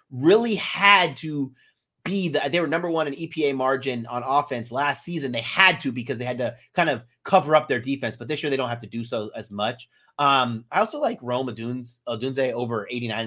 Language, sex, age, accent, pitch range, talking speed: English, male, 30-49, American, 120-165 Hz, 215 wpm